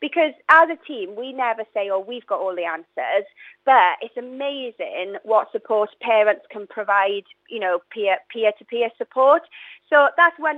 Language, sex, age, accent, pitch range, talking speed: English, female, 30-49, British, 230-305 Hz, 160 wpm